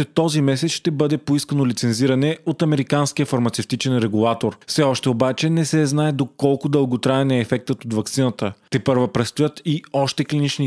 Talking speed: 170 wpm